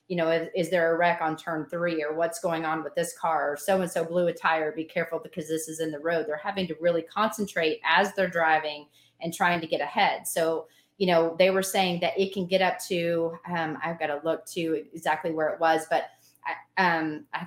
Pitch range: 165-195 Hz